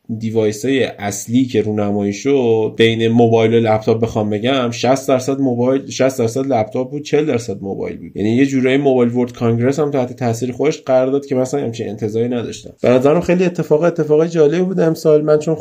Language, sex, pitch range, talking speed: Persian, male, 115-135 Hz, 190 wpm